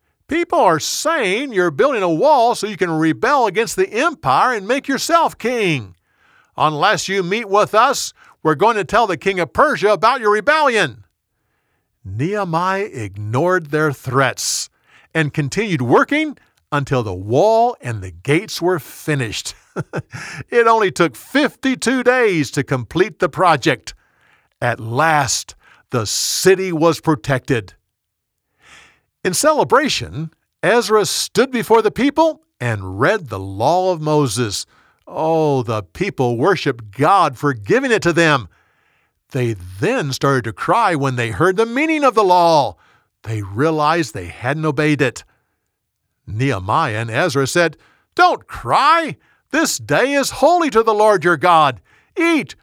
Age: 50-69